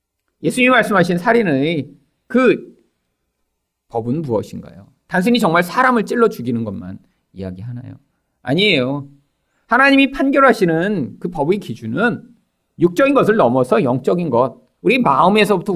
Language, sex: Korean, male